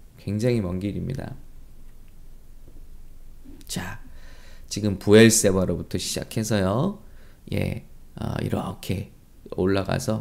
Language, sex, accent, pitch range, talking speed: English, male, Korean, 95-120 Hz, 65 wpm